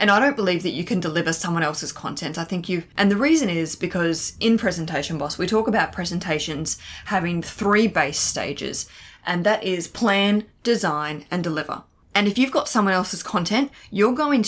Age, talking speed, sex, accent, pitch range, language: 20-39, 190 wpm, female, Australian, 160-200 Hz, English